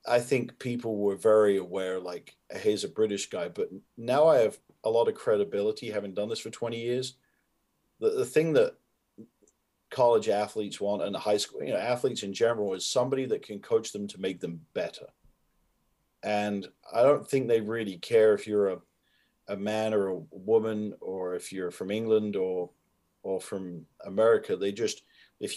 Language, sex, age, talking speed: English, male, 40-59, 185 wpm